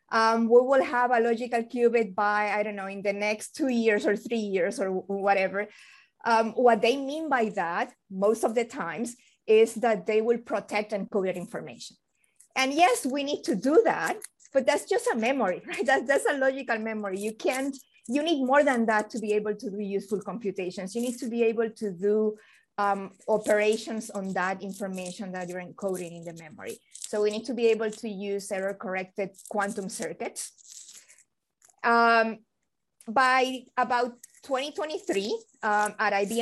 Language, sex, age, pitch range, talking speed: English, female, 30-49, 200-240 Hz, 170 wpm